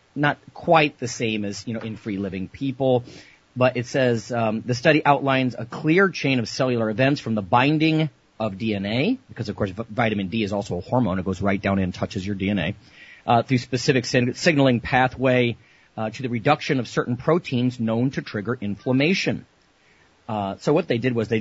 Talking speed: 195 wpm